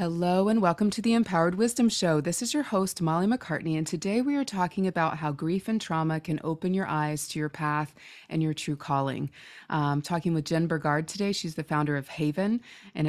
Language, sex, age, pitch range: English, female, 30-49, 145-170 Hz